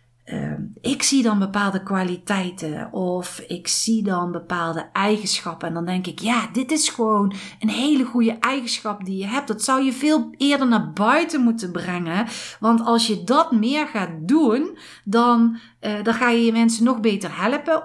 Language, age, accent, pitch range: Dutch, 50-69, Dutch, 185-260 Hz